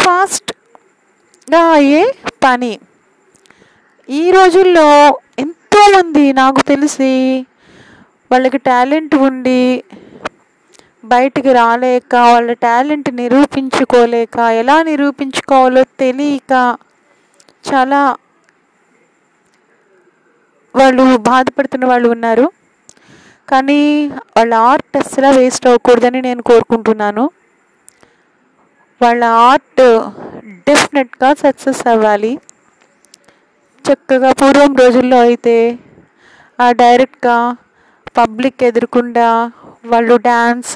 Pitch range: 235-275 Hz